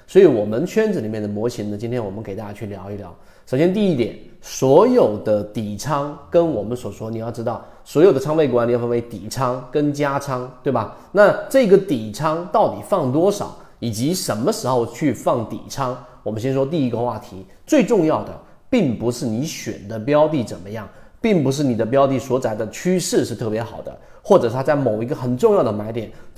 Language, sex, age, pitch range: Chinese, male, 30-49, 110-165 Hz